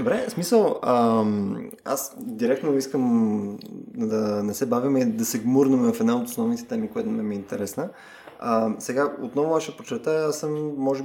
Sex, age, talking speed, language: male, 20-39, 175 wpm, Bulgarian